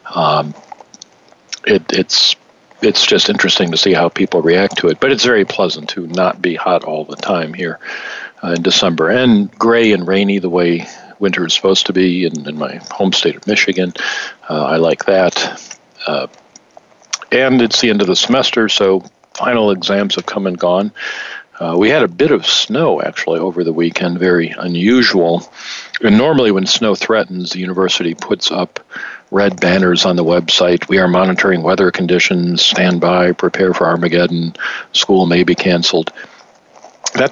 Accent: American